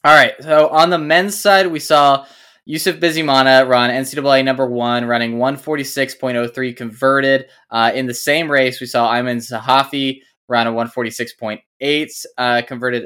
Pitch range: 115-145 Hz